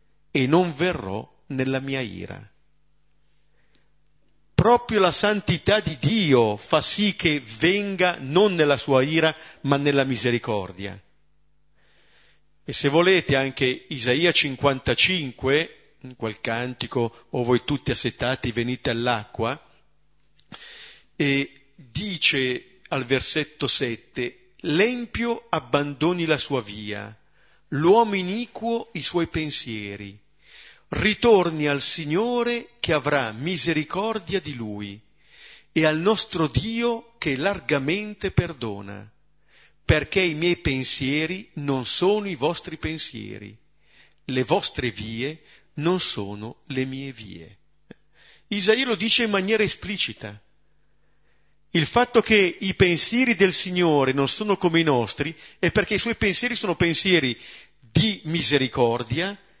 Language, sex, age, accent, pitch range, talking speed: Italian, male, 50-69, native, 130-190 Hz, 110 wpm